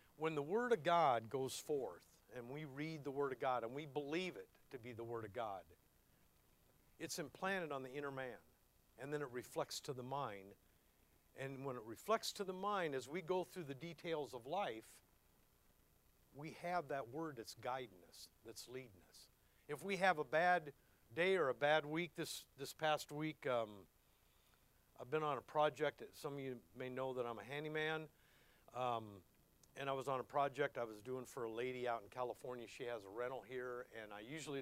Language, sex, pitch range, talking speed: English, male, 115-150 Hz, 205 wpm